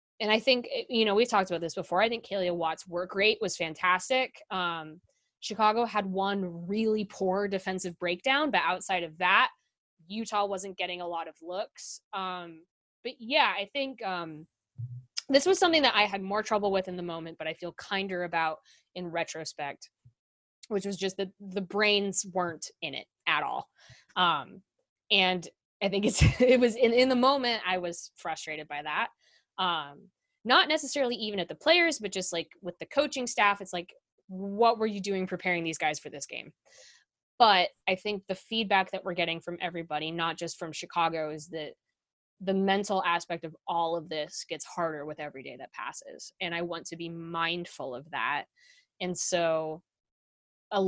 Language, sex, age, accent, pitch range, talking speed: English, female, 20-39, American, 165-210 Hz, 185 wpm